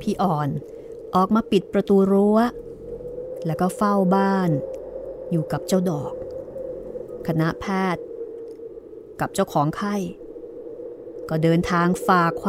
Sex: female